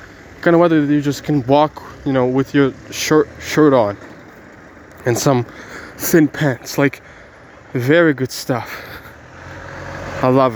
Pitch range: 115-145 Hz